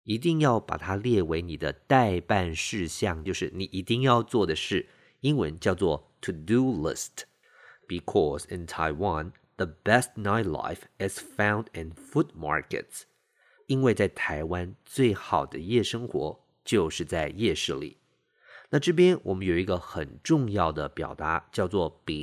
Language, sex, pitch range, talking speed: English, male, 85-115 Hz, 35 wpm